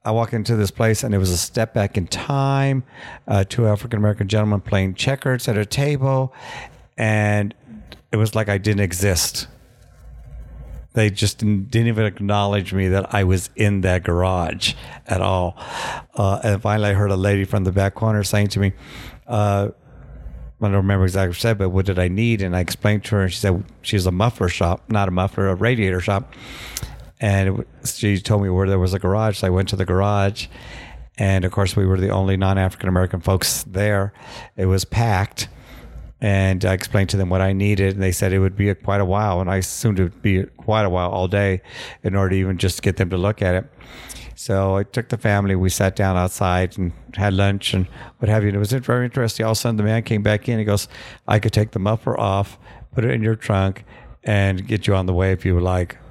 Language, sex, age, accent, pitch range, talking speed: English, male, 50-69, American, 95-110 Hz, 220 wpm